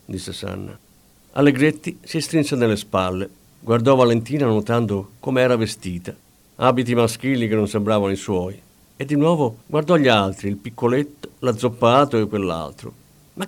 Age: 50-69